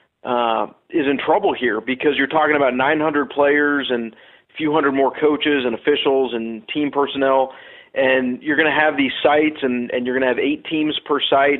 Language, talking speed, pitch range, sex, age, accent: English, 200 wpm, 130-150 Hz, male, 40-59, American